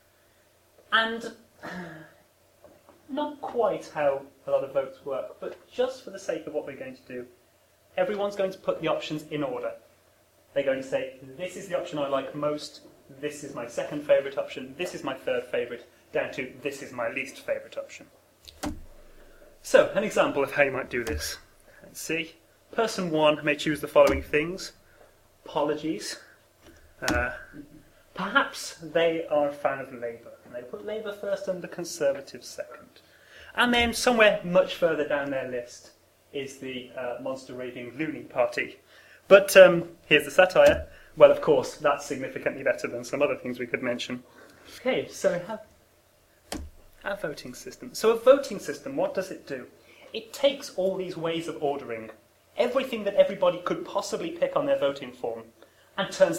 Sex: male